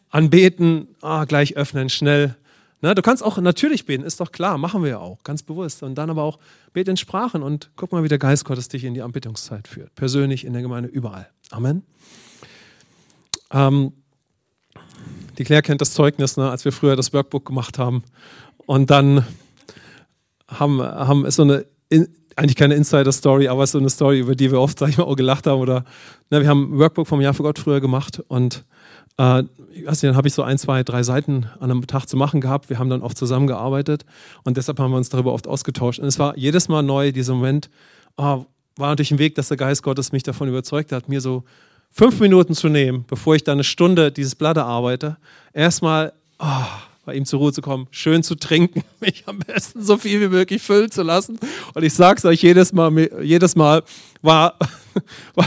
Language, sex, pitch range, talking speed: English, male, 135-160 Hz, 210 wpm